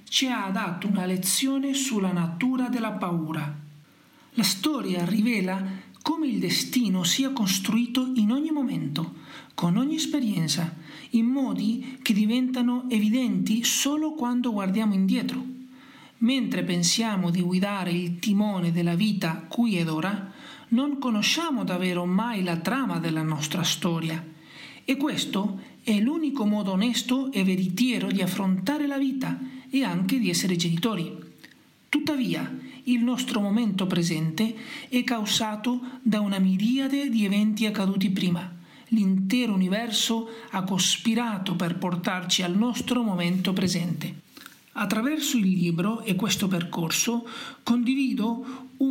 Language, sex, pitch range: Italian, male, 185-250 Hz